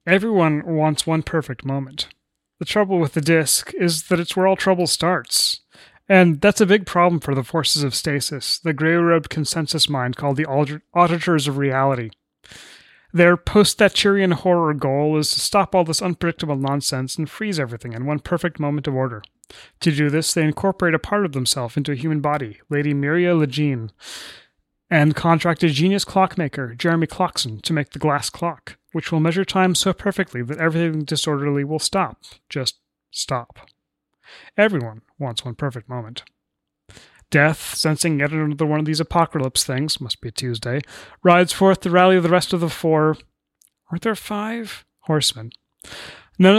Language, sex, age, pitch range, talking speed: English, male, 30-49, 140-175 Hz, 170 wpm